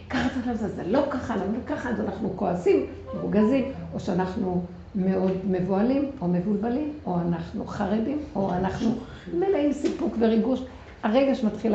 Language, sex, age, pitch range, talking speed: Hebrew, female, 60-79, 195-245 Hz, 165 wpm